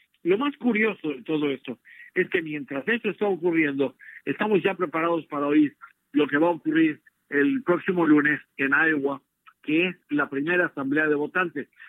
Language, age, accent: Spanish, 60-79, Mexican